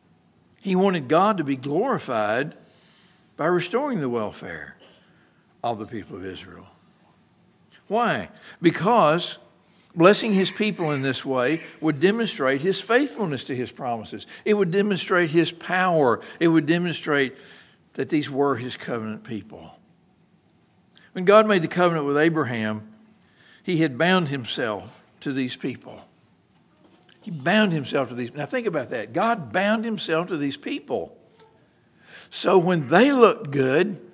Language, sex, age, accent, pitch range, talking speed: English, male, 60-79, American, 140-195 Hz, 135 wpm